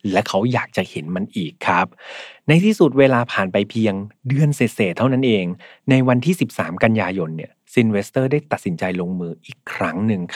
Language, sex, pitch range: Thai, male, 105-140 Hz